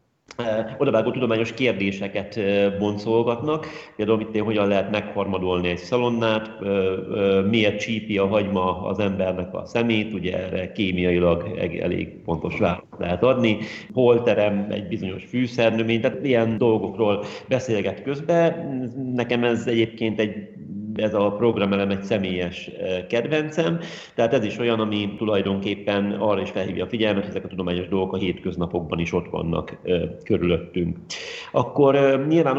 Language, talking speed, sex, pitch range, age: Hungarian, 135 wpm, male, 100-115 Hz, 40-59